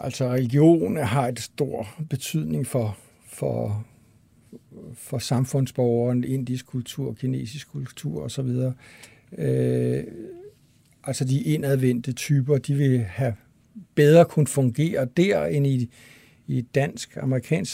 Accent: native